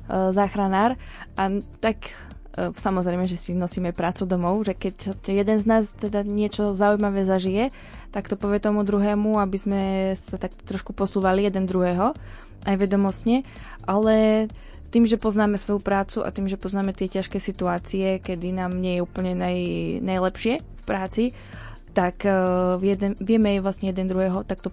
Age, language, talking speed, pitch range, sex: 20-39, Slovak, 150 wpm, 180-200 Hz, female